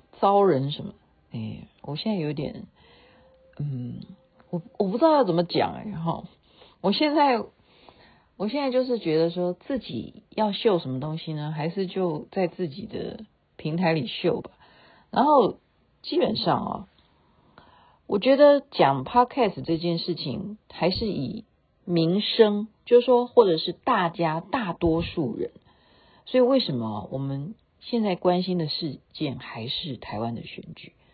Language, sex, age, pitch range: Chinese, female, 50-69, 160-235 Hz